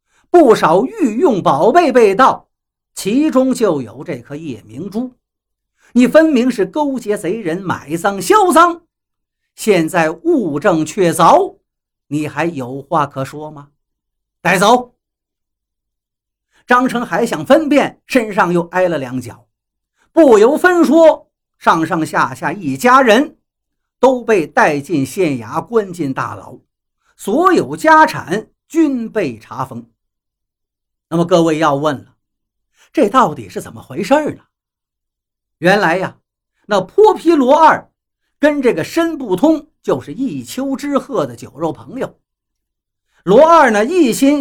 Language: Chinese